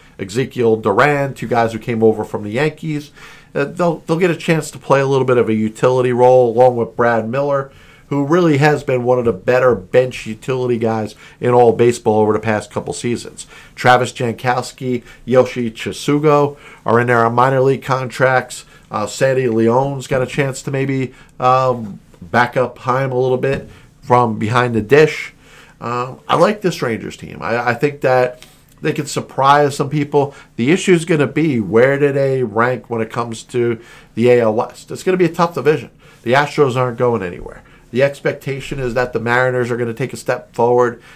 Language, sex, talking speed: English, male, 195 wpm